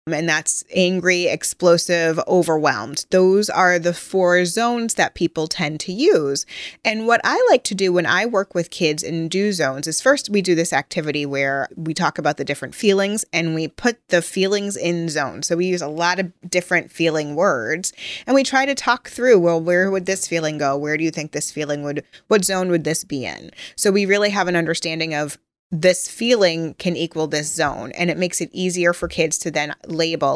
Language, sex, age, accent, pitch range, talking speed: English, female, 20-39, American, 160-195 Hz, 210 wpm